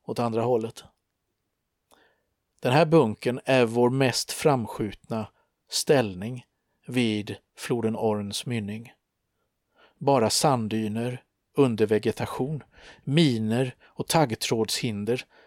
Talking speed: 80 wpm